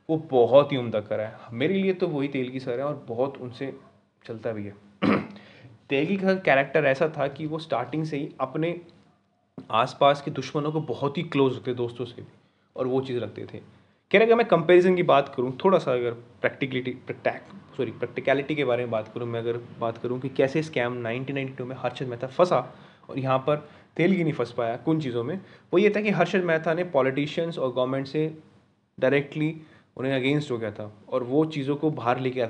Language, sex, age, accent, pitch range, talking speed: Hindi, male, 20-39, native, 120-155 Hz, 210 wpm